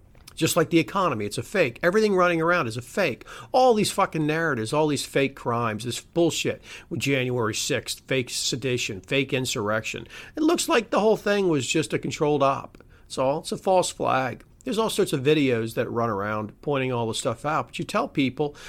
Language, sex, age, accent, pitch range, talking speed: English, male, 50-69, American, 130-175 Hz, 205 wpm